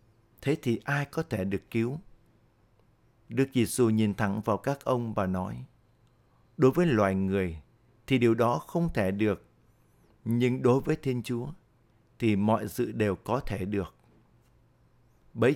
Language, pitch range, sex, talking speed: Vietnamese, 110-130 Hz, male, 150 wpm